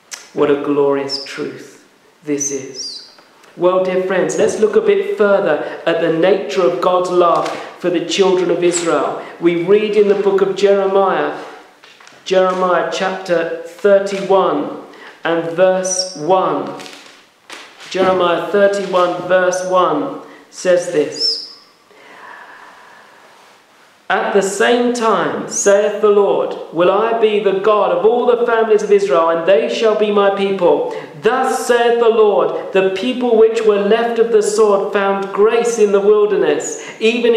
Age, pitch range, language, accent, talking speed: 50-69, 180-230 Hz, English, British, 140 wpm